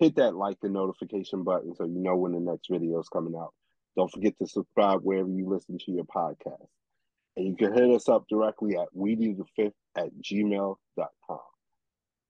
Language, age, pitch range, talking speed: English, 30-49, 90-105 Hz, 190 wpm